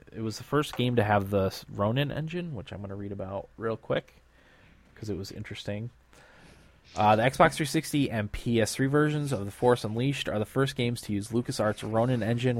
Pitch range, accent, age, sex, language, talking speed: 100-125 Hz, American, 20-39, male, English, 200 wpm